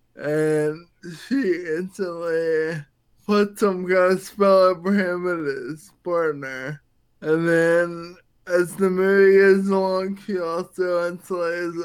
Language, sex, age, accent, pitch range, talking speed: English, male, 20-39, American, 160-190 Hz, 115 wpm